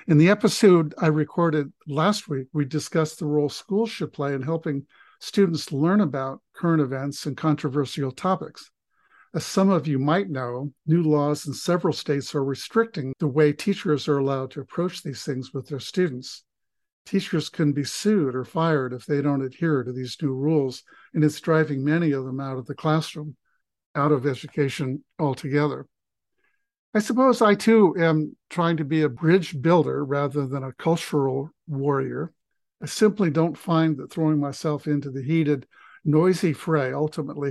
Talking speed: 170 wpm